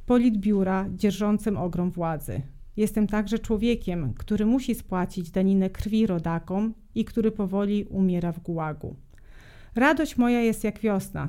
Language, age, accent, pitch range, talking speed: Polish, 30-49, native, 170-215 Hz, 130 wpm